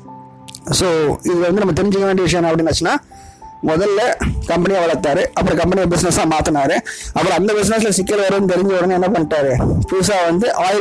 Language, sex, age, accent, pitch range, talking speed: Tamil, male, 20-39, native, 155-195 Hz, 95 wpm